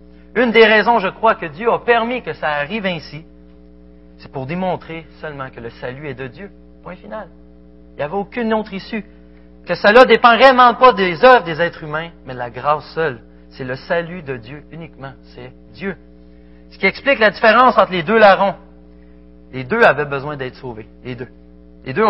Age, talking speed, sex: 40-59, 200 wpm, male